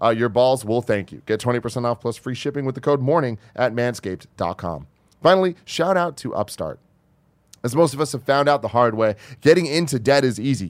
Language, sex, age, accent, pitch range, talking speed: English, male, 30-49, American, 105-140 Hz, 215 wpm